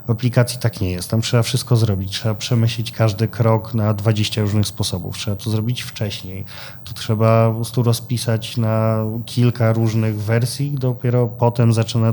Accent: native